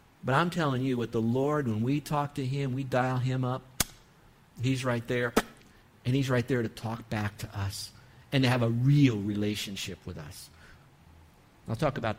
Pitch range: 120-160 Hz